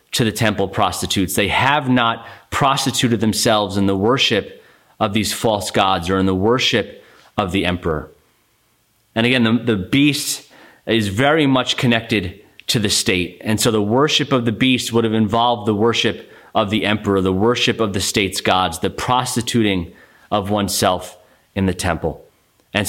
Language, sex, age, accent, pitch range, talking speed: English, male, 30-49, American, 95-120 Hz, 170 wpm